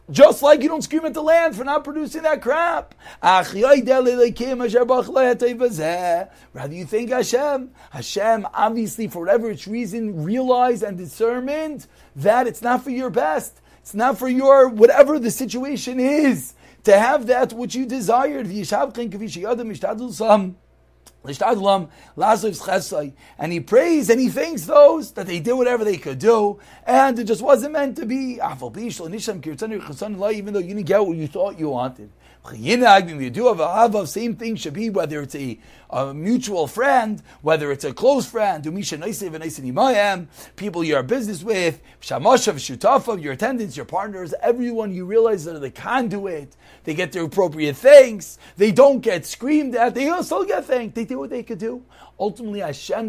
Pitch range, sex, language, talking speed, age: 190-255 Hz, male, English, 150 wpm, 40-59